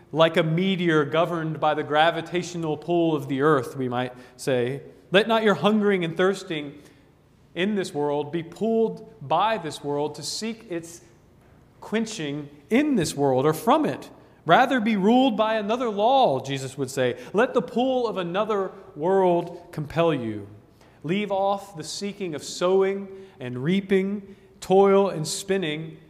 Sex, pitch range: male, 140-195 Hz